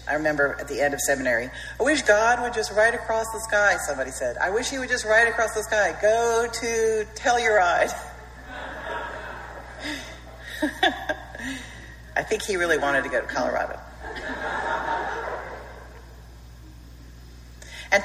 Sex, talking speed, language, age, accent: female, 135 wpm, English, 40-59, American